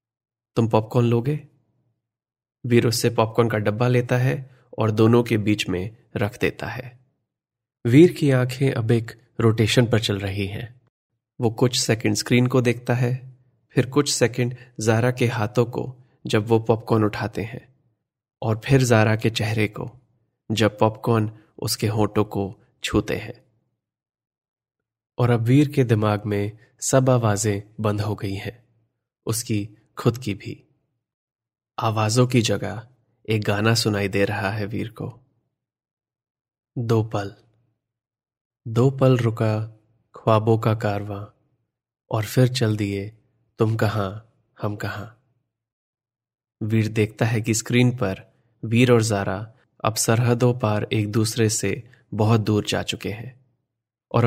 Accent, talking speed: native, 135 wpm